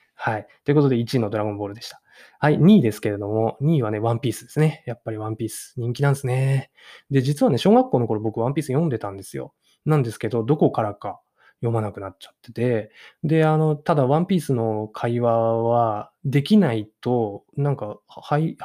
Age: 20-39